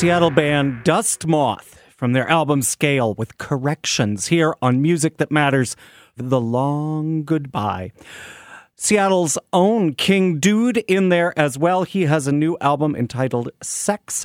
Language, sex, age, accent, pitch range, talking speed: English, male, 40-59, American, 130-175 Hz, 145 wpm